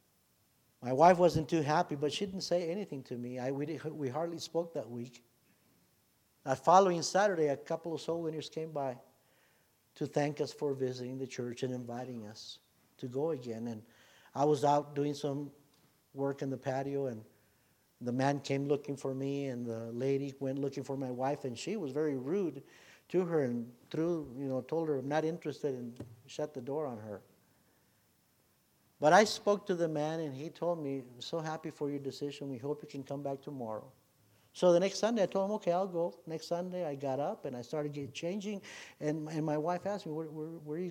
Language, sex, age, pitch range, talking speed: English, male, 60-79, 130-165 Hz, 210 wpm